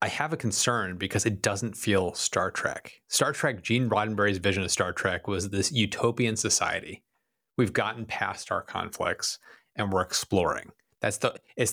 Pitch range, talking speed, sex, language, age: 100-120 Hz, 170 wpm, male, English, 30-49